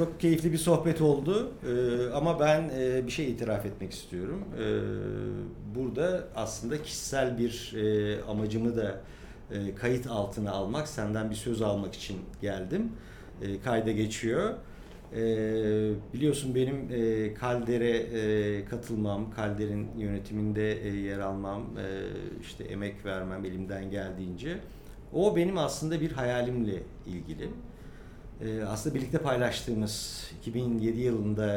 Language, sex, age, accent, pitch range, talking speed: Turkish, male, 50-69, native, 100-125 Hz, 120 wpm